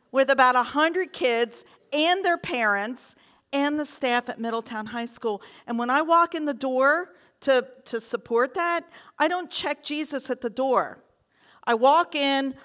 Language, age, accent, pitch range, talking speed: English, 50-69, American, 255-315 Hz, 165 wpm